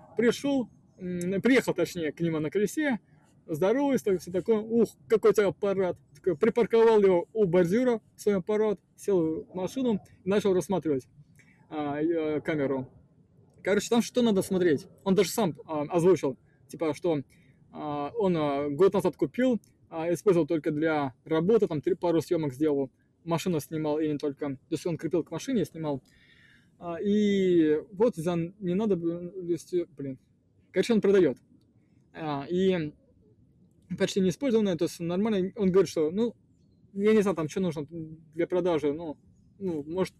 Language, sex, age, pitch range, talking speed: Russian, male, 20-39, 155-200 Hz, 145 wpm